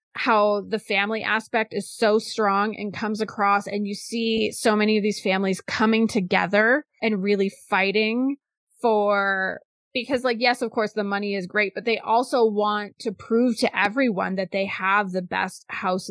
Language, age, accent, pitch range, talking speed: English, 20-39, American, 195-225 Hz, 175 wpm